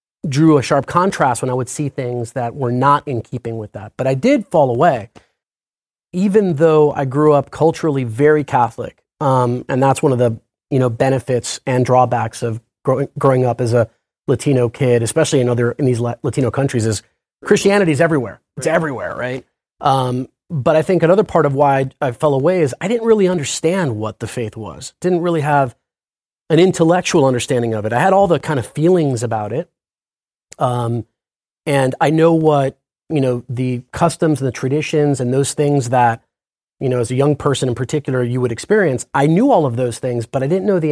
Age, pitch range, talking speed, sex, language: 30-49, 125-155 Hz, 200 wpm, male, English